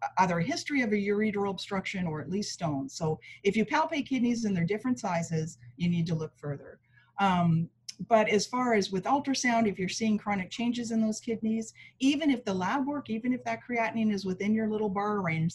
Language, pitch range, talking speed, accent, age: English, 160-205 Hz, 210 wpm, American, 40-59